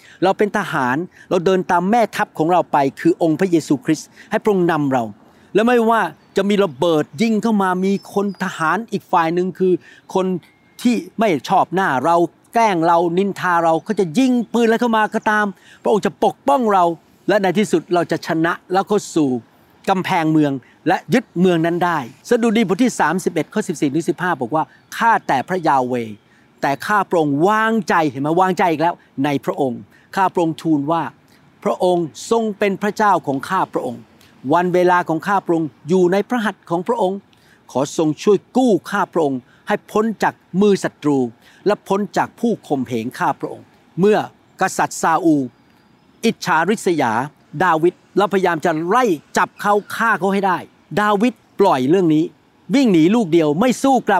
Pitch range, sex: 160-210 Hz, male